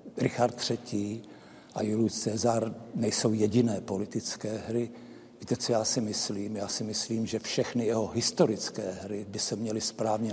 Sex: male